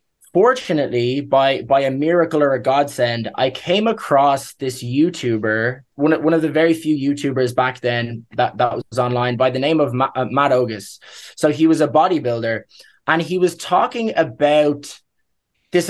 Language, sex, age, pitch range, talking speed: English, male, 20-39, 130-170 Hz, 170 wpm